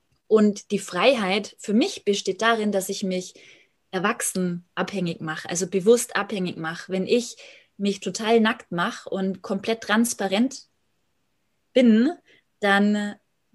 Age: 20-39